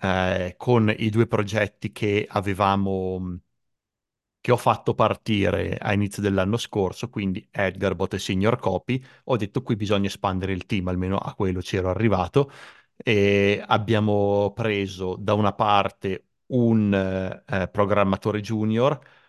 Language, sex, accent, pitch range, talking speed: Italian, male, native, 100-110 Hz, 135 wpm